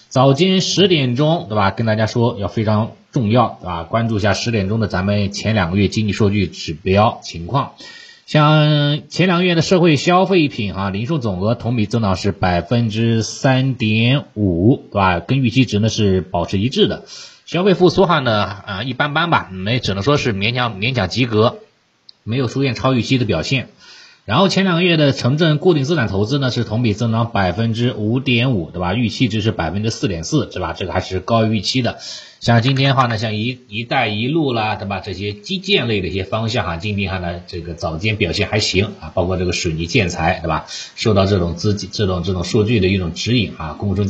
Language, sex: Chinese, male